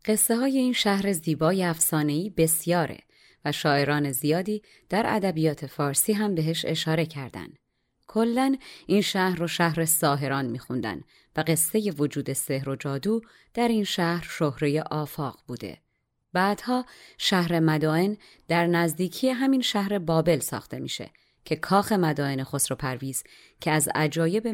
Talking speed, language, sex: 130 wpm, Persian, female